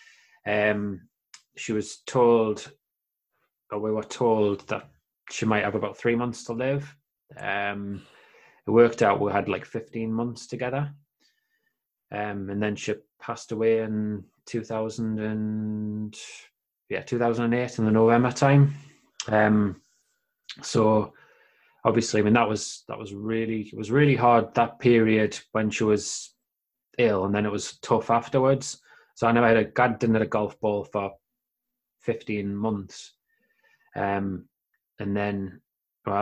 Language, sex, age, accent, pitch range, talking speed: English, male, 20-39, British, 105-120 Hz, 140 wpm